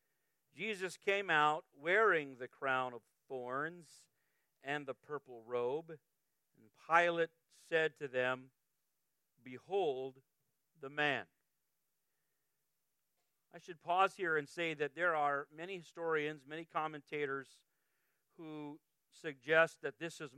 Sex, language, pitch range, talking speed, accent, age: male, English, 135-165 Hz, 110 wpm, American, 50-69